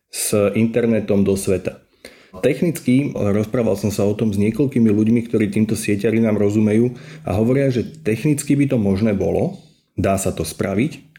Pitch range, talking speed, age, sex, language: 100-115 Hz, 160 wpm, 30-49, male, Slovak